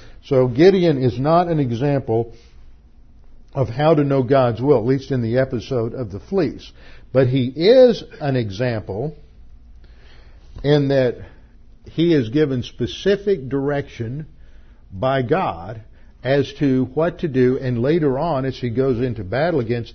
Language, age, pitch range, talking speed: English, 50-69, 105-135 Hz, 145 wpm